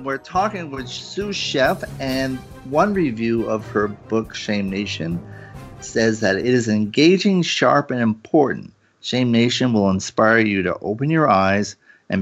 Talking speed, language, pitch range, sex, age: 150 wpm, English, 95-115 Hz, male, 40-59